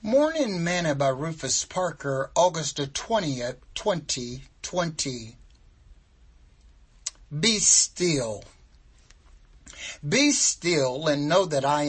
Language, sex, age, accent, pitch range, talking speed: English, male, 60-79, American, 120-165 Hz, 85 wpm